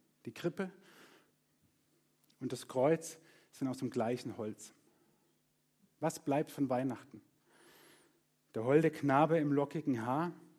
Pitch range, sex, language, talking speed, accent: 135-160 Hz, male, German, 115 wpm, German